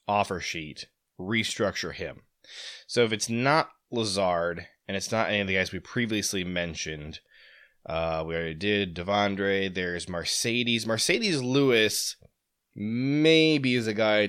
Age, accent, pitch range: 20-39, American, 90-115 Hz